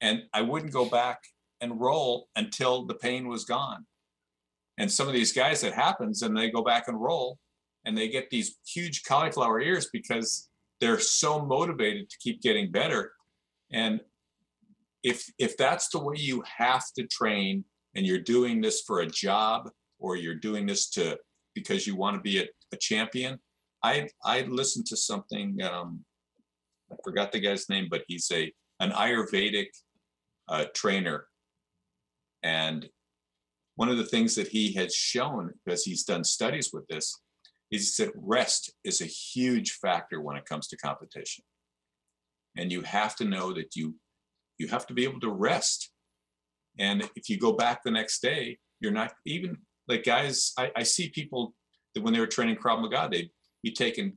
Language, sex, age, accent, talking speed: English, male, 50-69, American, 175 wpm